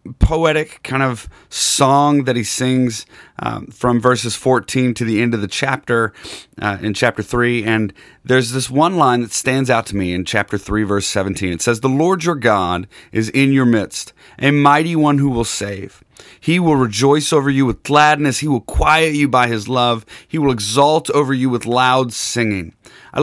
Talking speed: 195 wpm